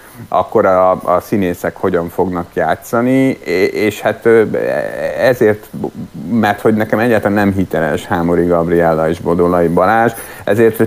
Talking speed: 125 wpm